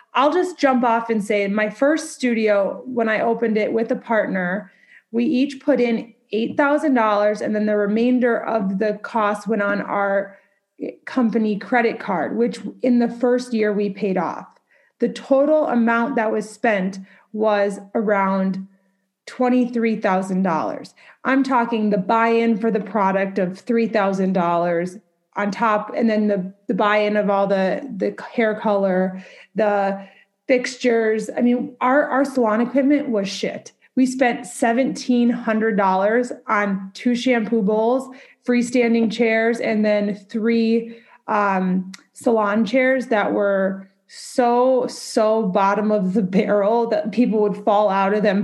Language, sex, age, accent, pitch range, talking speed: English, female, 30-49, American, 205-250 Hz, 140 wpm